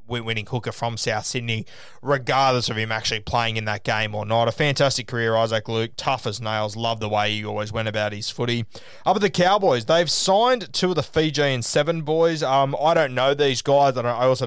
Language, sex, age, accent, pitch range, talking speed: English, male, 20-39, Australian, 115-140 Hz, 220 wpm